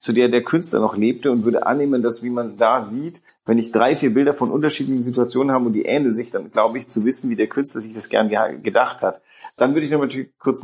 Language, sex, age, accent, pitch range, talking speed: German, male, 40-59, German, 115-140 Hz, 265 wpm